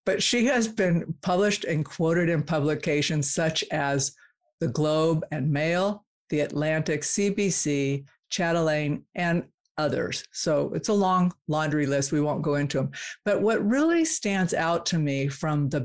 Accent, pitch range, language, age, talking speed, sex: American, 150-190 Hz, English, 50-69, 155 wpm, female